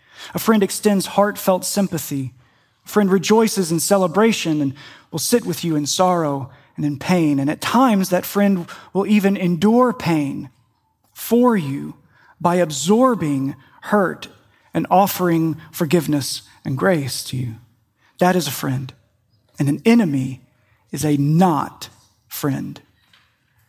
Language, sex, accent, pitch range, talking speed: English, male, American, 140-190 Hz, 130 wpm